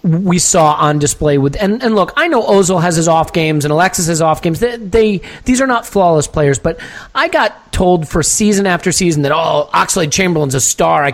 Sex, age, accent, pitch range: male, 40-59, American, 135-170 Hz